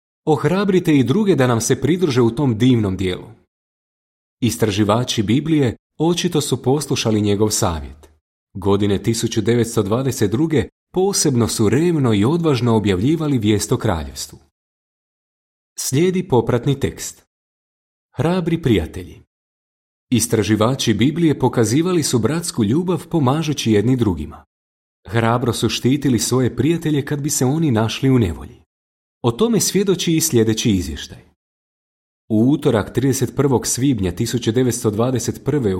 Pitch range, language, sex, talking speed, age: 110-145 Hz, Croatian, male, 110 wpm, 30-49